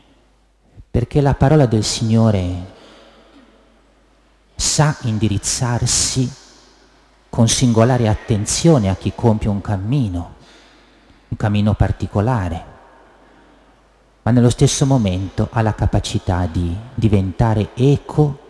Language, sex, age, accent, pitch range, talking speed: Italian, male, 40-59, native, 95-125 Hz, 90 wpm